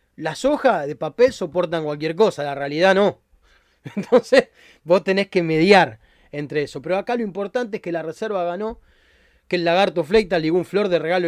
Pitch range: 155-205 Hz